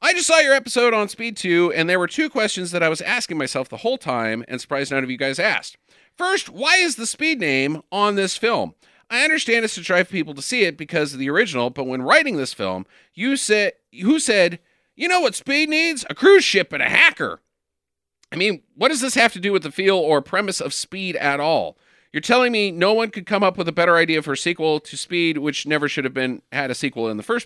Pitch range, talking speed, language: 140-225 Hz, 250 wpm, English